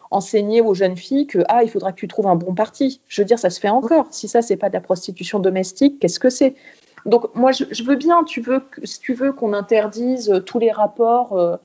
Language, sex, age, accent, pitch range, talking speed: French, female, 30-49, French, 195-255 Hz, 235 wpm